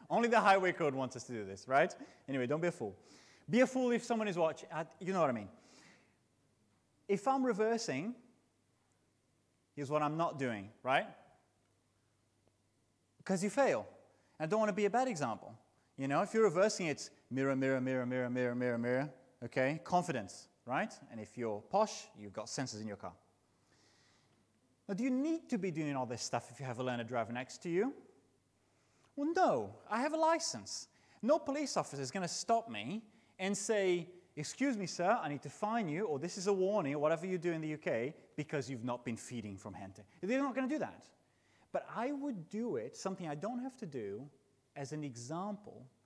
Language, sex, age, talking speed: English, male, 30-49, 200 wpm